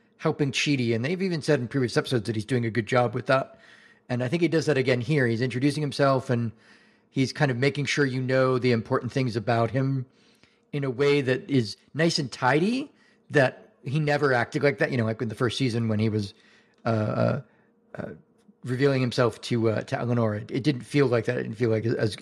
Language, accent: English, American